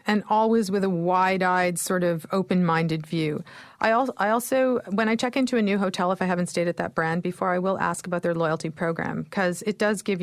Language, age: English, 40-59